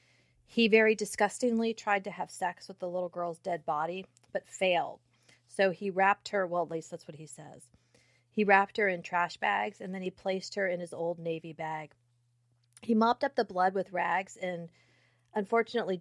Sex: female